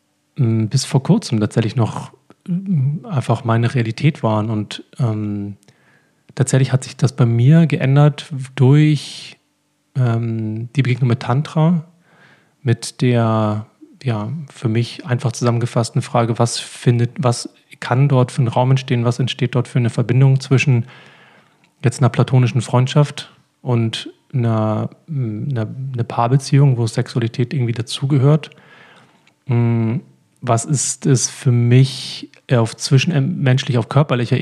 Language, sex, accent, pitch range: German, male, German, 115-145 Hz